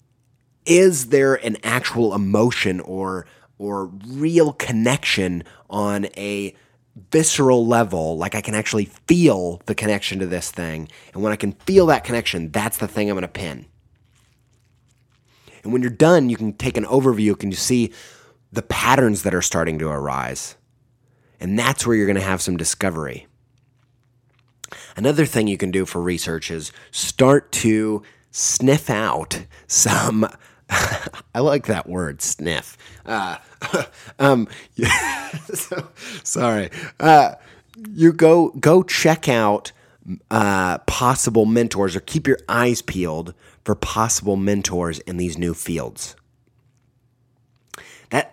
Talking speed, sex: 135 wpm, male